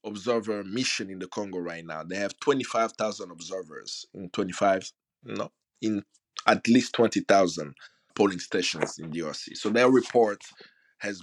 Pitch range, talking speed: 100-120 Hz, 140 wpm